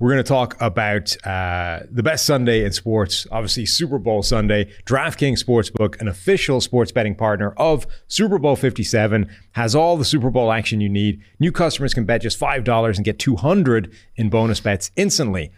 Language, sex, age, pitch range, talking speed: English, male, 30-49, 100-130 Hz, 180 wpm